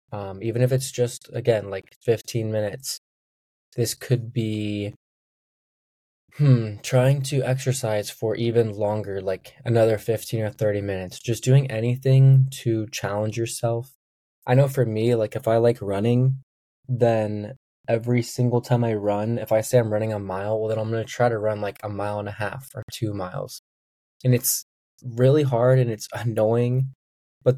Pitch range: 105-125 Hz